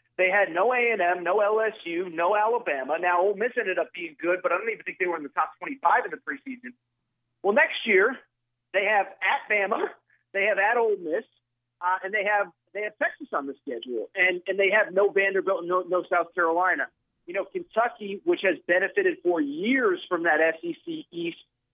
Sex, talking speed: male, 205 wpm